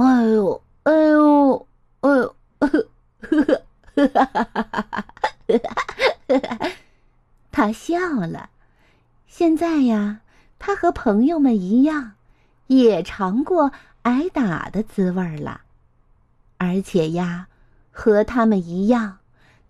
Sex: female